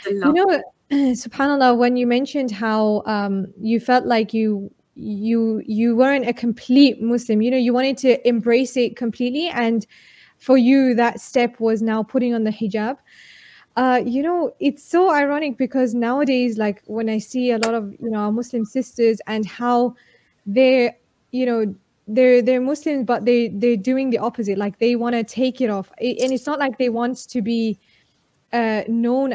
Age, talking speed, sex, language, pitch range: 20-39, 180 wpm, female, English, 220-265 Hz